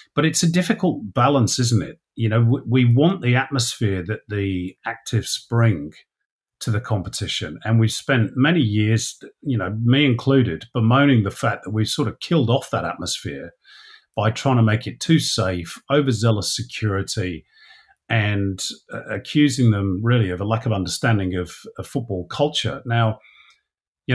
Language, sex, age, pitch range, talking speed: English, male, 50-69, 100-135 Hz, 165 wpm